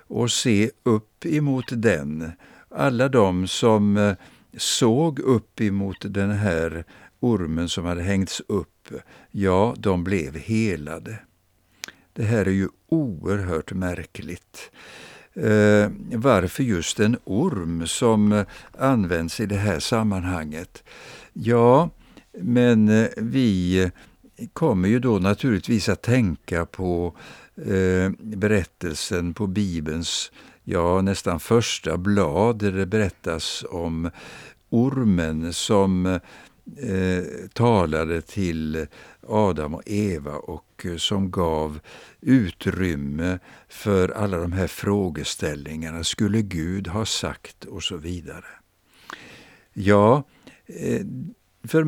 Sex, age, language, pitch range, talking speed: male, 60-79, Swedish, 85-110 Hz, 95 wpm